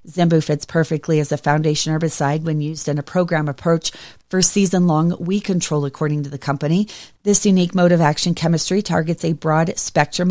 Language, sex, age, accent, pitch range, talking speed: English, female, 40-59, American, 155-180 Hz, 185 wpm